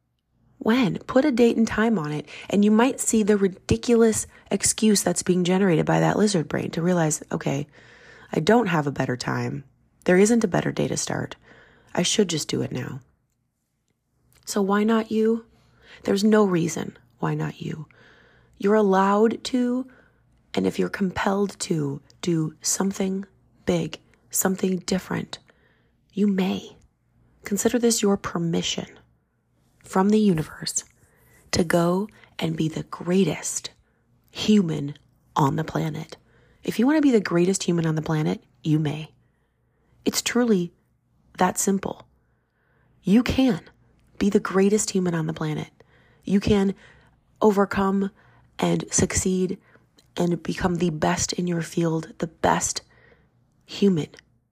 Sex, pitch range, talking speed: female, 155-210 Hz, 140 wpm